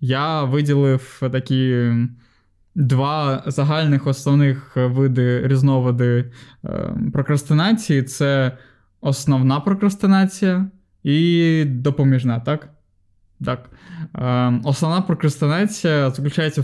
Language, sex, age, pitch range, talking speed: Ukrainian, male, 20-39, 125-155 Hz, 70 wpm